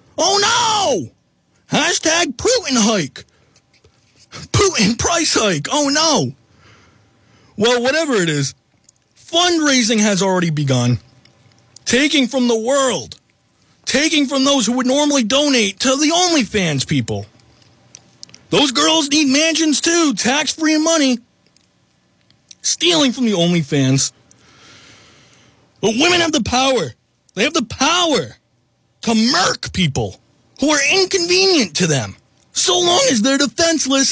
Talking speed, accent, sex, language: 115 wpm, American, male, English